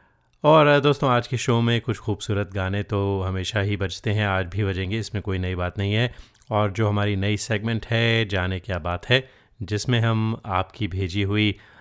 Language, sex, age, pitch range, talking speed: Hindi, male, 30-49, 100-120 Hz, 195 wpm